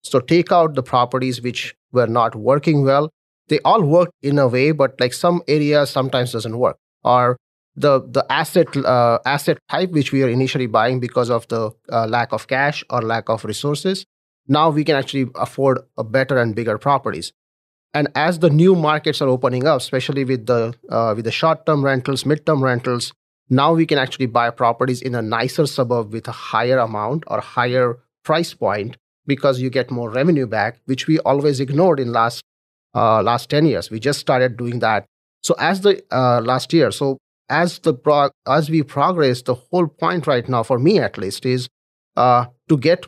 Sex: male